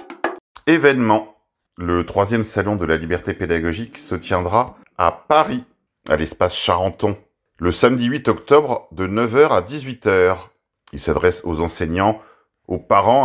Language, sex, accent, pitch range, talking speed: French, male, French, 85-115 Hz, 130 wpm